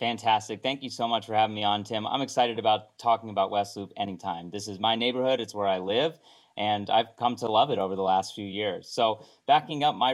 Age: 30-49